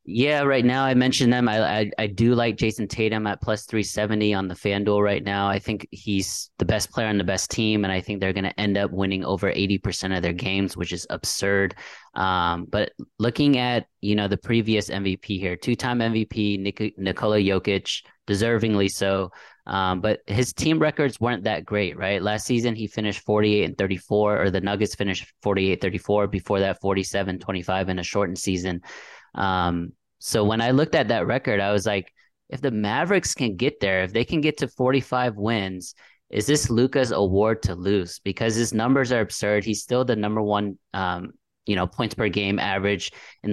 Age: 20-39